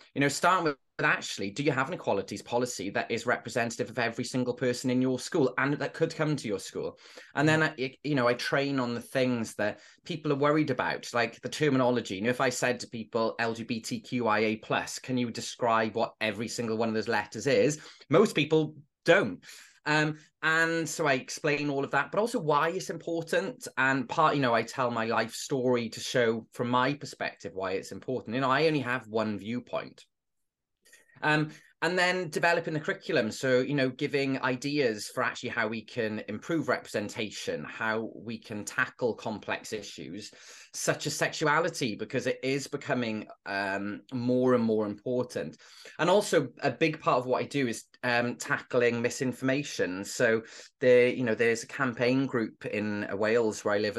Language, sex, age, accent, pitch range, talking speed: English, male, 20-39, British, 115-145 Hz, 190 wpm